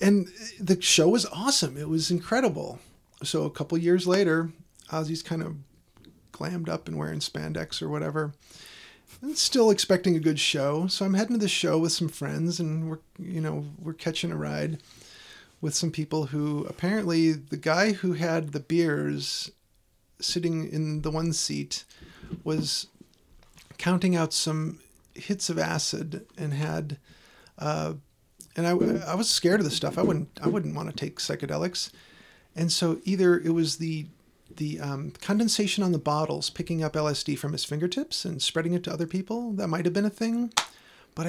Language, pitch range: English, 150-185 Hz